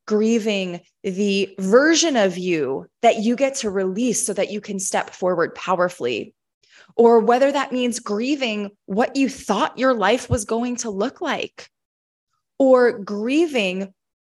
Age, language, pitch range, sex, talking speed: 20-39, English, 185-235 Hz, female, 145 wpm